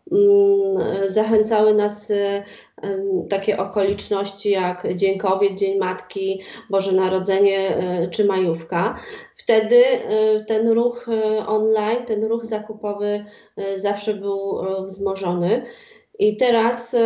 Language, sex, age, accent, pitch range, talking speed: Polish, female, 30-49, native, 195-230 Hz, 90 wpm